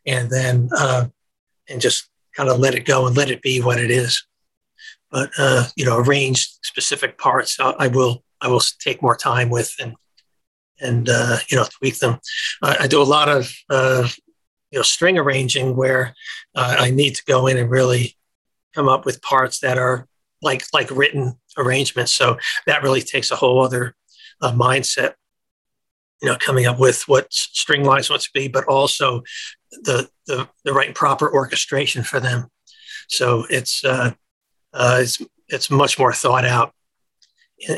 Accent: American